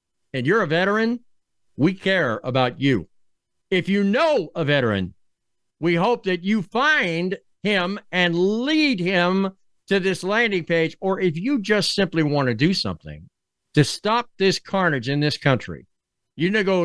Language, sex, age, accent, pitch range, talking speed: English, male, 50-69, American, 155-230 Hz, 165 wpm